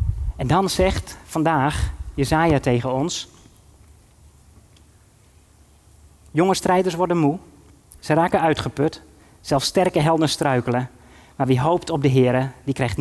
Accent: Dutch